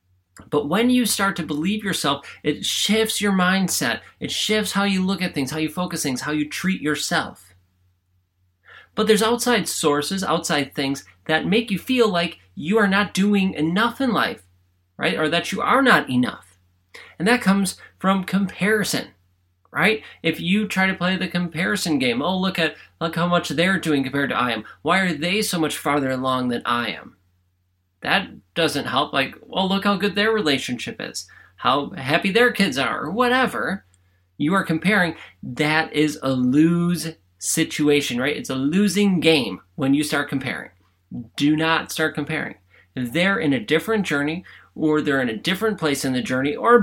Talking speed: 180 wpm